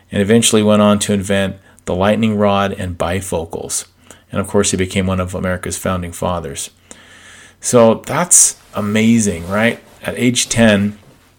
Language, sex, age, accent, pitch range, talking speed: English, male, 40-59, American, 95-110 Hz, 150 wpm